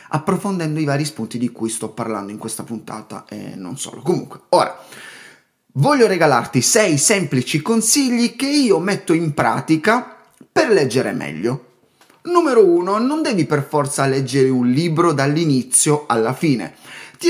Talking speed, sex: 145 wpm, male